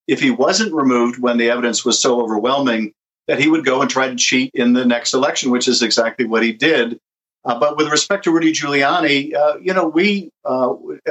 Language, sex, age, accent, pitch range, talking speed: English, male, 50-69, American, 125-160 Hz, 215 wpm